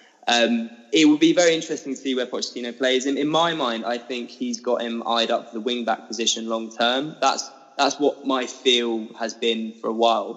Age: 10-29